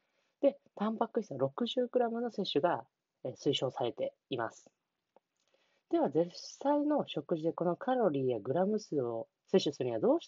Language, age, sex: Japanese, 20-39, female